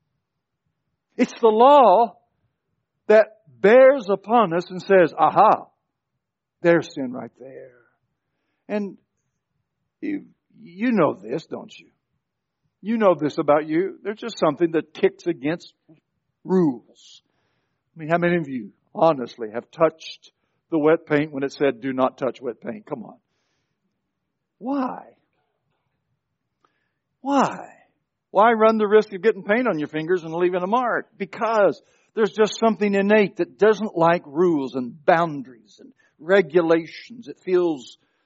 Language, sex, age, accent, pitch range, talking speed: English, male, 60-79, American, 150-215 Hz, 135 wpm